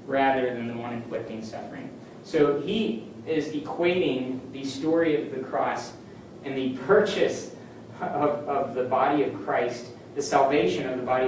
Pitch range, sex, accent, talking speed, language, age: 120-145 Hz, male, American, 155 wpm, English, 30-49